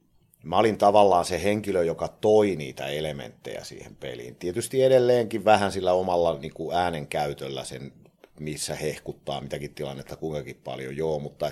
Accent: native